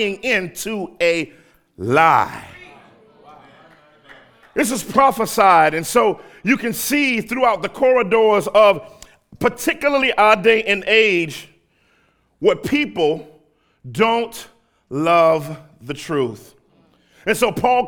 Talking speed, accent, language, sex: 95 wpm, American, English, male